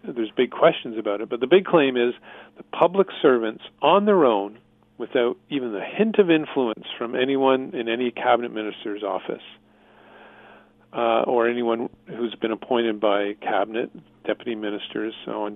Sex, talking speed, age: male, 155 wpm, 40-59